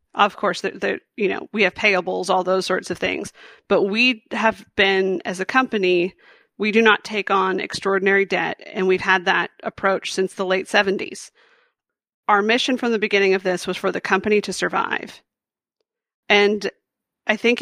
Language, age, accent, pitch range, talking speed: English, 40-59, American, 190-225 Hz, 180 wpm